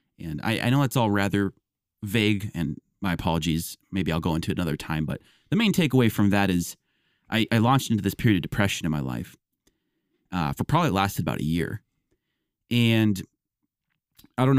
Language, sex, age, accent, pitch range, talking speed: English, male, 30-49, American, 85-110 Hz, 190 wpm